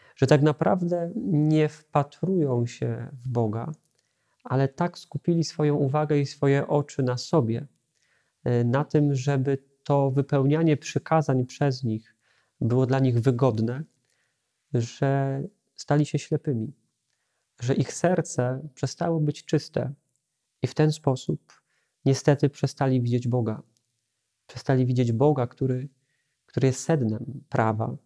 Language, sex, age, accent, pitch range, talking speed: Polish, male, 40-59, native, 125-150 Hz, 120 wpm